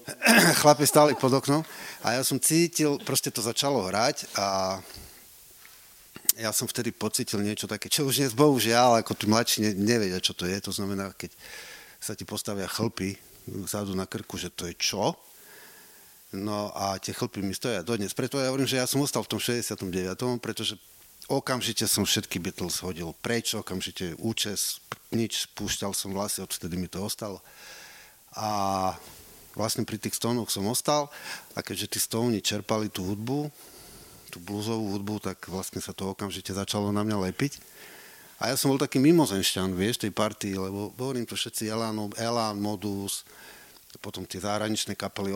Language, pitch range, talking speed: Slovak, 95-120 Hz, 165 wpm